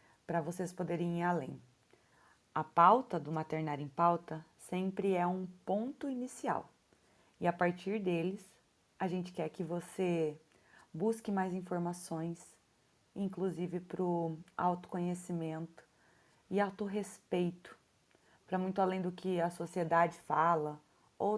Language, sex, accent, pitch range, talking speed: Portuguese, female, Brazilian, 170-195 Hz, 120 wpm